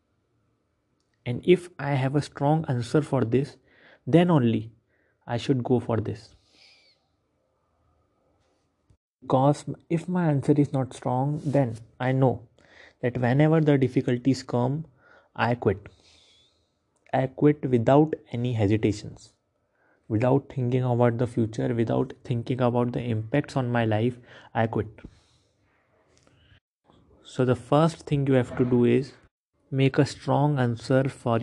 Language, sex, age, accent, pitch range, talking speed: English, male, 30-49, Indian, 115-135 Hz, 130 wpm